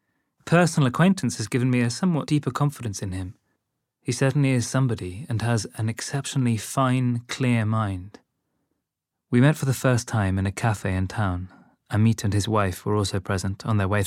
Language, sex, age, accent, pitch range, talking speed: English, male, 20-39, British, 100-120 Hz, 185 wpm